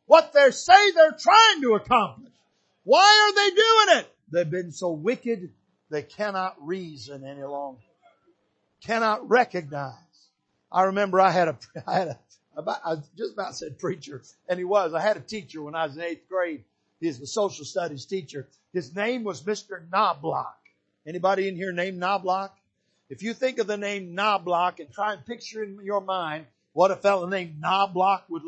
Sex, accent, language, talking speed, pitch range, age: male, American, English, 180 wpm, 180-230 Hz, 50-69